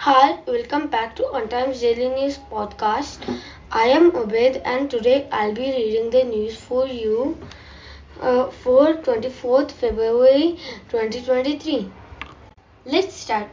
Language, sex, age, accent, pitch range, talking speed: English, female, 20-39, Indian, 235-290 Hz, 125 wpm